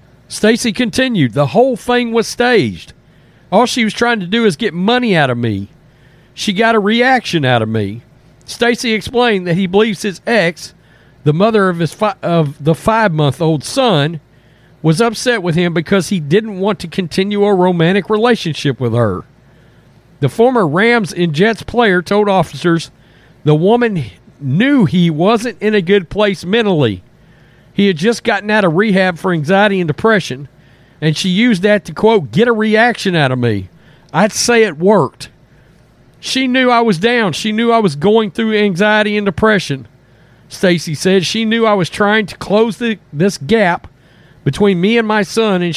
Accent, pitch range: American, 150-215 Hz